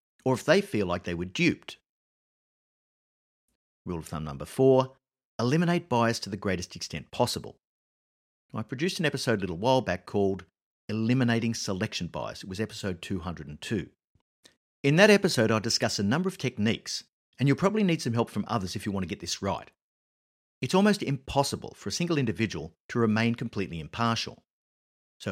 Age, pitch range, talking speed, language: 50-69, 90-135 Hz, 170 wpm, English